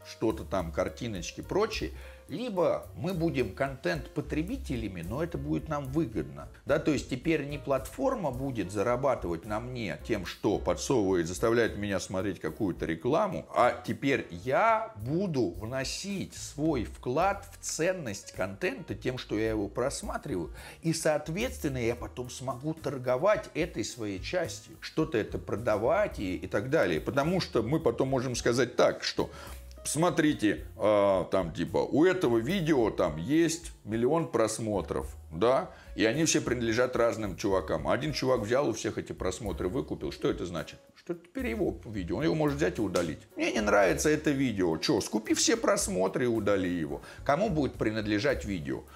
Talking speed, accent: 155 wpm, native